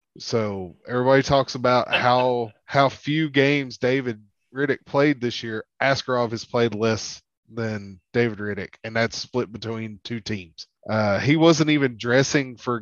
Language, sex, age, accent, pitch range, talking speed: English, male, 20-39, American, 110-125 Hz, 150 wpm